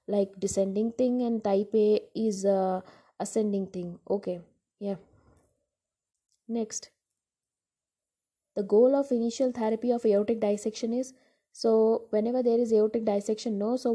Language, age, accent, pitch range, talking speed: English, 20-39, Indian, 205-235 Hz, 130 wpm